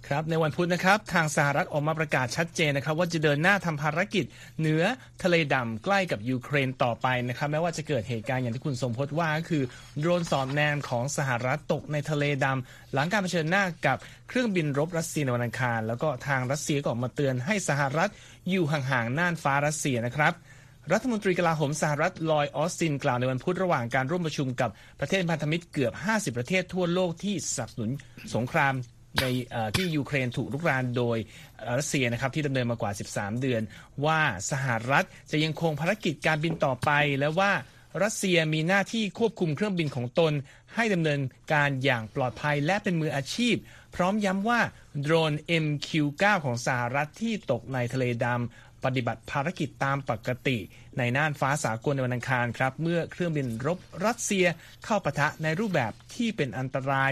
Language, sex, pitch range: Thai, male, 130-170 Hz